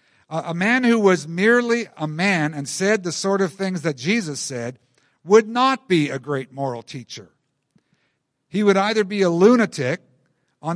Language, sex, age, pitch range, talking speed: English, male, 50-69, 140-200 Hz, 165 wpm